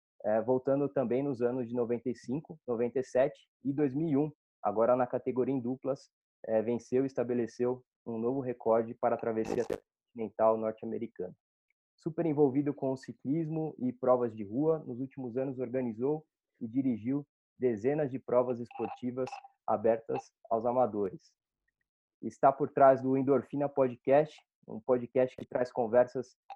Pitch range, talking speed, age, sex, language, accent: 115-135 Hz, 135 wpm, 20-39, male, Portuguese, Brazilian